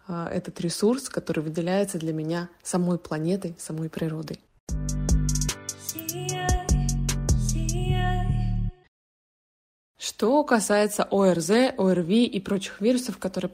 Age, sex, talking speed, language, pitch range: 20-39, female, 80 wpm, Russian, 175-210 Hz